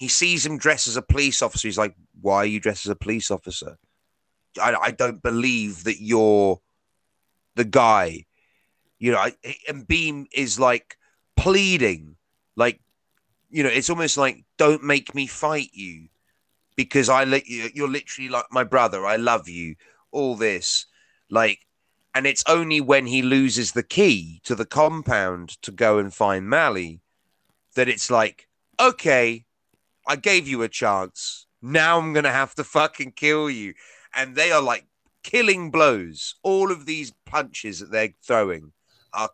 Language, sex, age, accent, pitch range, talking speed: English, male, 30-49, British, 110-145 Hz, 165 wpm